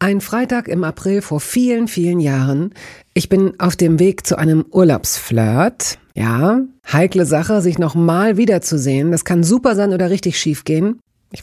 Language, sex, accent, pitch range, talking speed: German, female, German, 155-195 Hz, 165 wpm